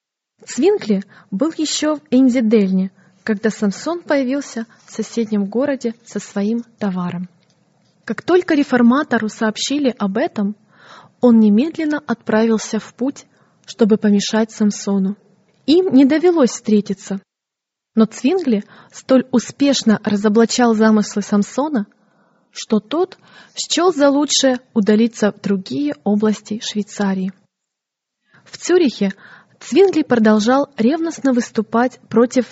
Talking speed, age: 105 wpm, 20-39